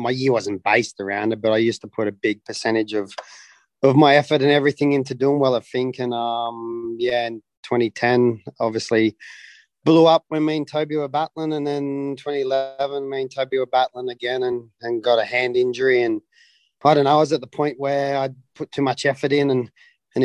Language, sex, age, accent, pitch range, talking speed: English, male, 30-49, Australian, 125-140 Hz, 215 wpm